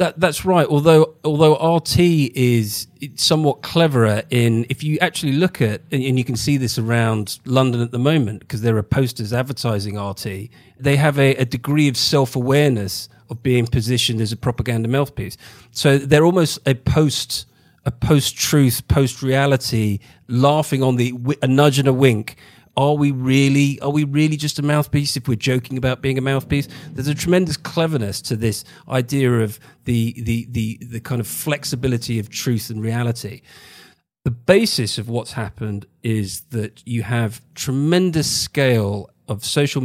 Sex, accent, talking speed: male, British, 170 wpm